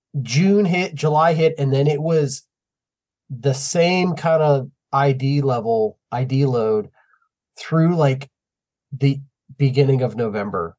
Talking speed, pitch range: 120 wpm, 120-155 Hz